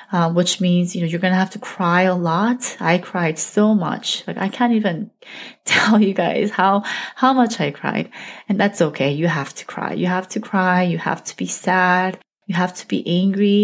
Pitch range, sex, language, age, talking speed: 170-205 Hz, female, English, 20-39, 215 wpm